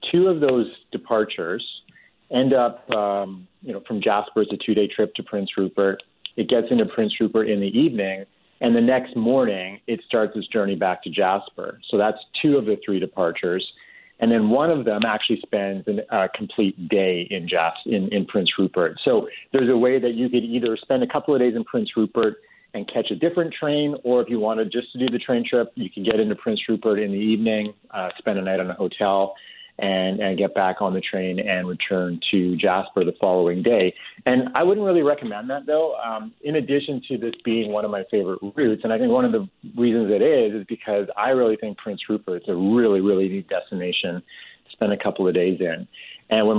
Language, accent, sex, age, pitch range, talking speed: English, American, male, 40-59, 100-125 Hz, 220 wpm